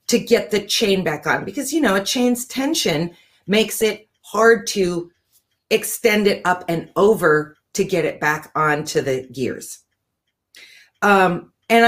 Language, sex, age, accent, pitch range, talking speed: English, female, 40-59, American, 170-230 Hz, 150 wpm